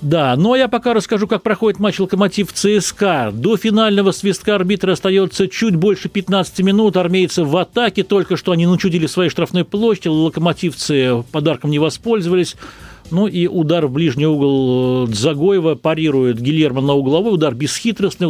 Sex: male